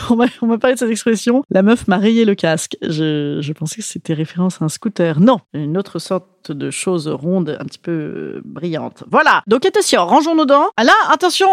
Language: French